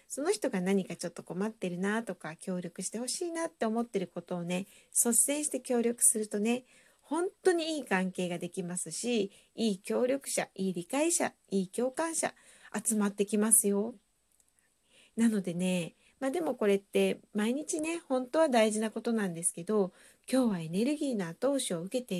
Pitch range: 180-255 Hz